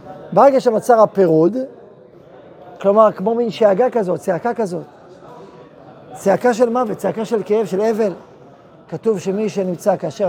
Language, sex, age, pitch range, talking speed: Hebrew, male, 40-59, 185-225 Hz, 130 wpm